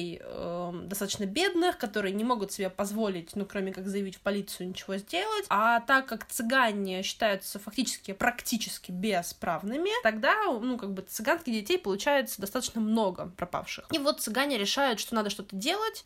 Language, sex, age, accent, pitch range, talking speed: Russian, female, 20-39, native, 200-275 Hz, 155 wpm